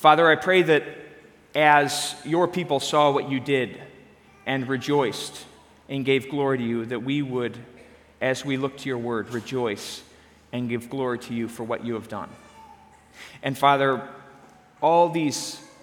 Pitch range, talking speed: 125-155 Hz, 160 wpm